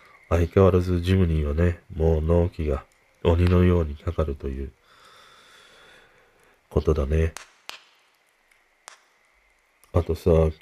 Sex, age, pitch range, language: male, 40-59, 85-130 Hz, Japanese